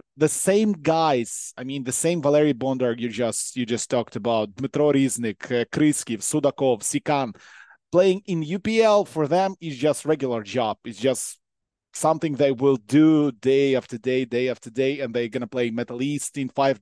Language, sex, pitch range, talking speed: English, male, 130-165 Hz, 180 wpm